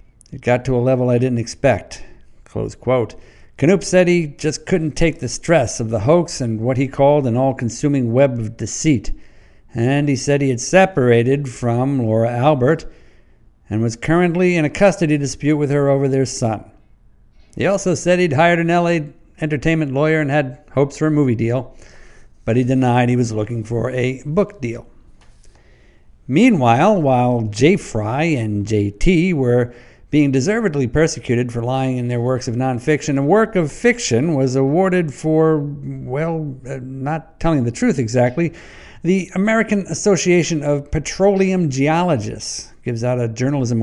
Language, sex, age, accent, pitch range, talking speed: English, male, 60-79, American, 120-160 Hz, 160 wpm